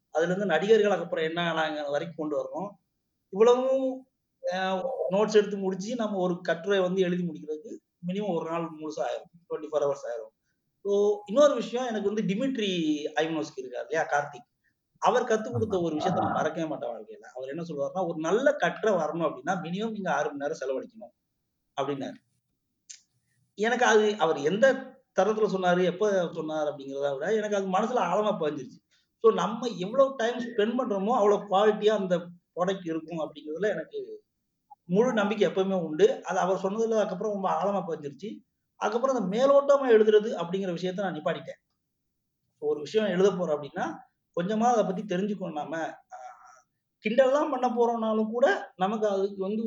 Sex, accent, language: male, native, Tamil